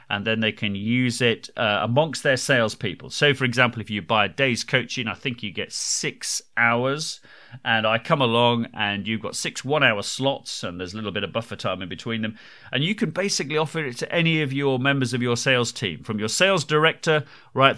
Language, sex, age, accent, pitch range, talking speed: English, male, 40-59, British, 110-150 Hz, 225 wpm